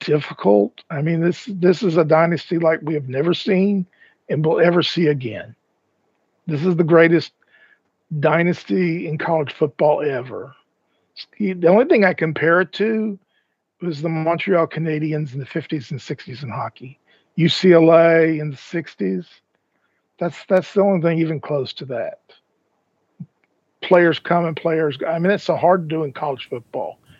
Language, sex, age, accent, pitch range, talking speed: English, male, 50-69, American, 150-175 Hz, 160 wpm